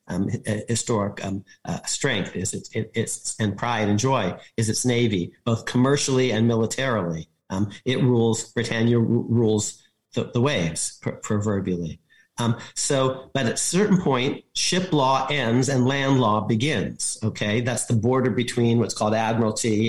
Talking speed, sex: 160 wpm, male